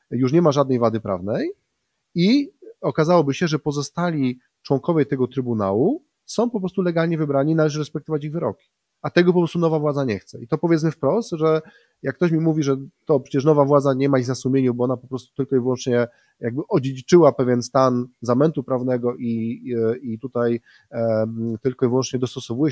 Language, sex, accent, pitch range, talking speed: Polish, male, native, 125-160 Hz, 185 wpm